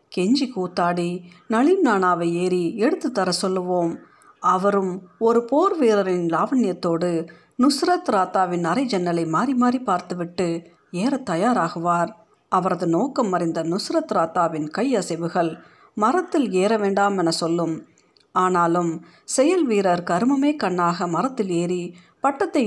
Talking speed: 105 wpm